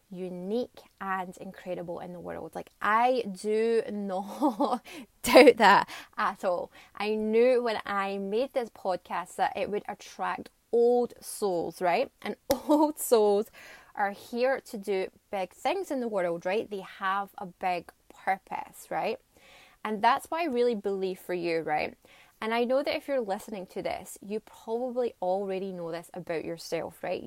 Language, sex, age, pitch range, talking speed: English, female, 20-39, 185-250 Hz, 160 wpm